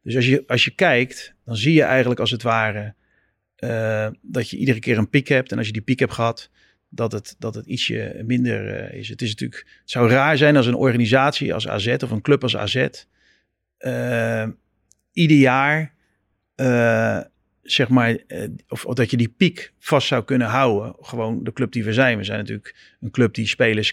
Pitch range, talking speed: 110-130 Hz, 210 wpm